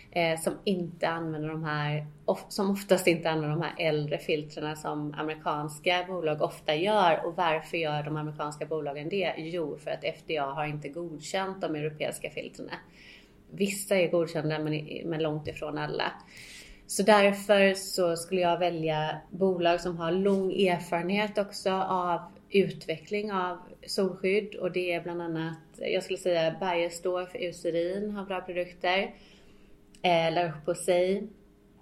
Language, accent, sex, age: Swedish, native, female, 30-49